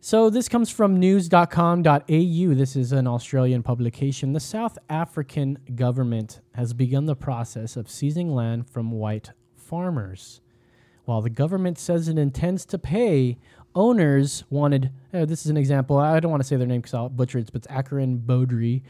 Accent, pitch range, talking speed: American, 125-175 Hz, 170 wpm